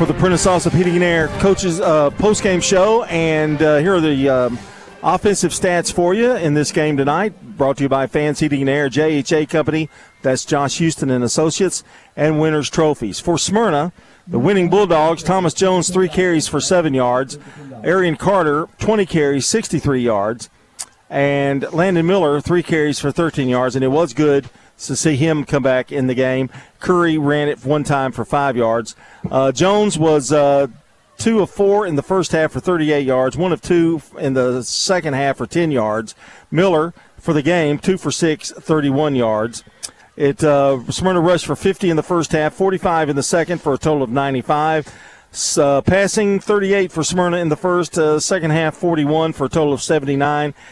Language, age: English, 40-59